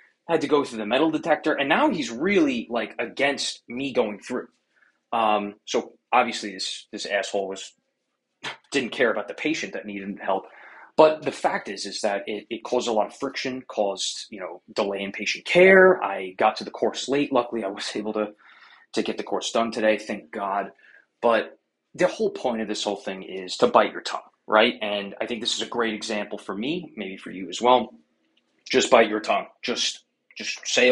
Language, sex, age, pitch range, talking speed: English, male, 20-39, 105-140 Hz, 205 wpm